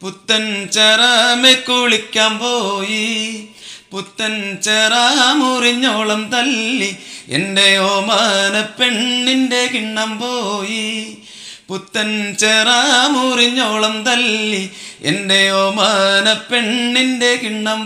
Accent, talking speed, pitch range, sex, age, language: native, 50 wpm, 200-240 Hz, male, 30-49, Malayalam